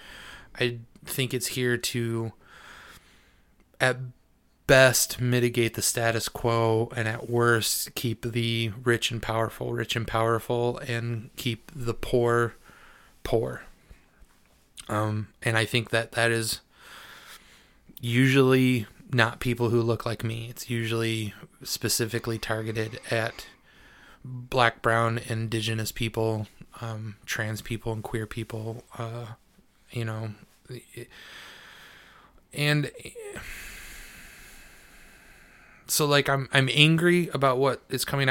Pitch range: 115-130 Hz